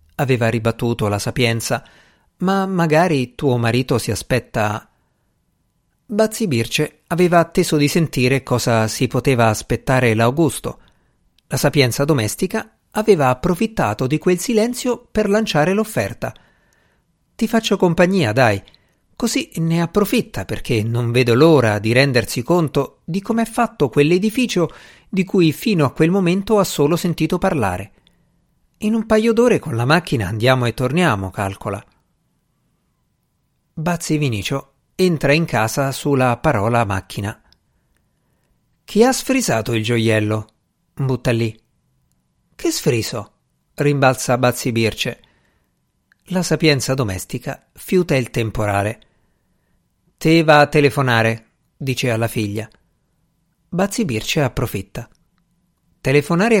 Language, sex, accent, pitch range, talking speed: Italian, male, native, 115-175 Hz, 115 wpm